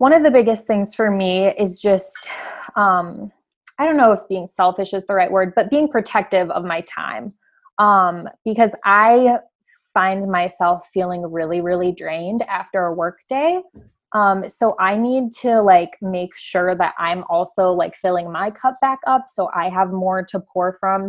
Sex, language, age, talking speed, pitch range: female, English, 20-39, 180 wpm, 180-215 Hz